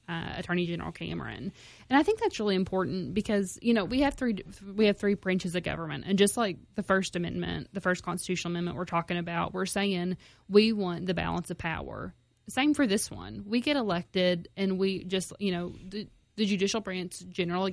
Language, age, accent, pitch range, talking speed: English, 20-39, American, 170-200 Hz, 205 wpm